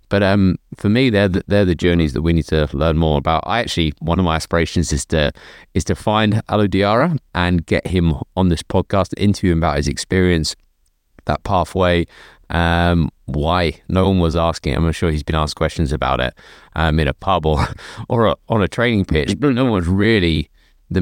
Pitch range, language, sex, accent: 80-95 Hz, English, male, British